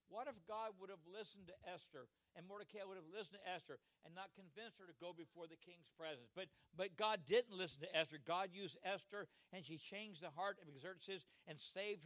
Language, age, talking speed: English, 60-79, 220 wpm